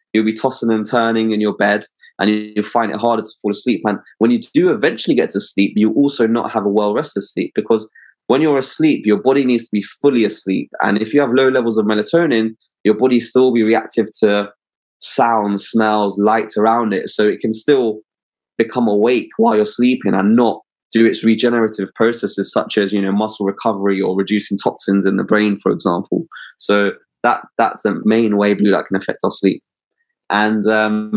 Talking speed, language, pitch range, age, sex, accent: 200 wpm, English, 100-115 Hz, 20-39, male, British